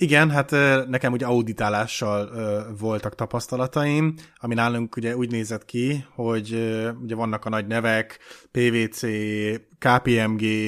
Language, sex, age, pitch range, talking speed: Hungarian, male, 20-39, 115-130 Hz, 130 wpm